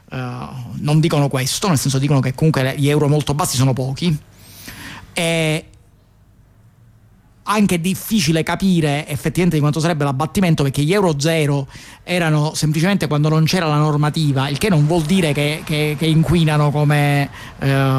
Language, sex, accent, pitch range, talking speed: Italian, male, native, 140-165 Hz, 145 wpm